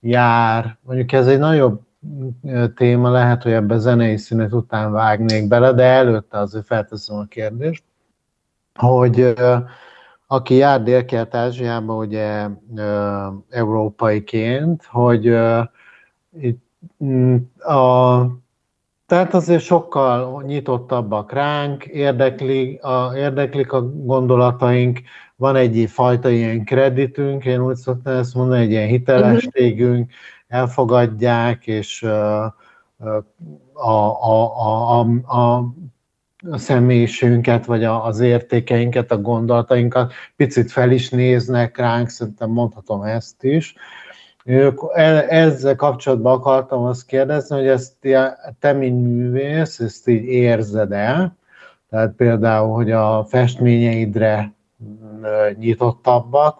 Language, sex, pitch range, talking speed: Hungarian, male, 110-130 Hz, 100 wpm